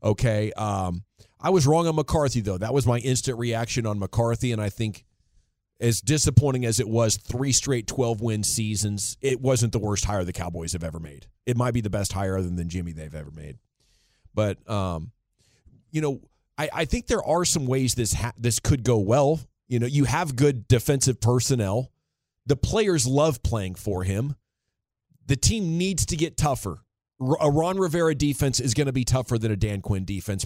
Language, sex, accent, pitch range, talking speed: English, male, American, 105-135 Hz, 195 wpm